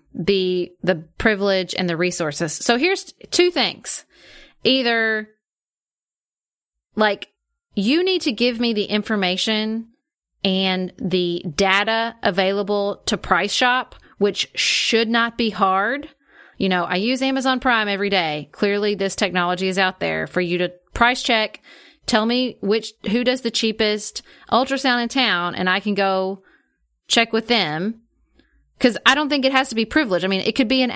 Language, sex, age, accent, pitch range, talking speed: English, female, 30-49, American, 185-230 Hz, 160 wpm